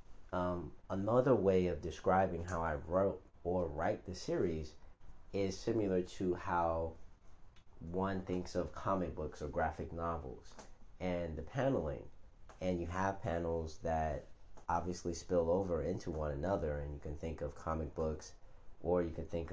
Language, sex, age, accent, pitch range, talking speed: English, male, 30-49, American, 80-95 Hz, 150 wpm